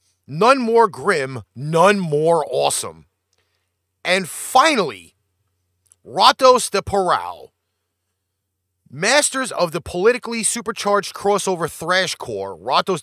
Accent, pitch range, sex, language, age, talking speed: American, 120-205 Hz, male, English, 30-49, 90 wpm